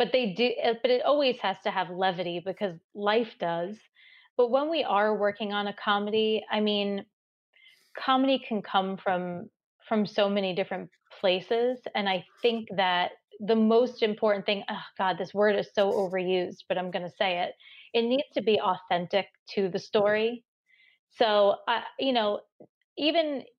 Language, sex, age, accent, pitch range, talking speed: English, female, 30-49, American, 190-230 Hz, 170 wpm